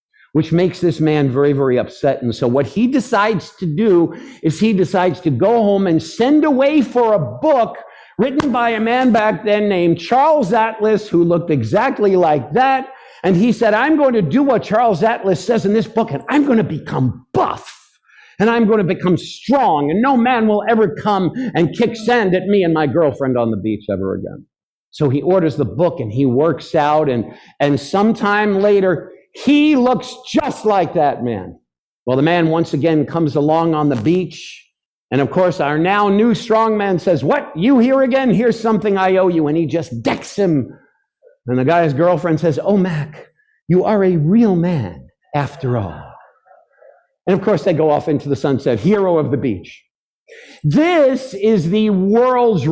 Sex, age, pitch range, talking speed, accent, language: male, 50-69, 150-225 Hz, 190 wpm, American, English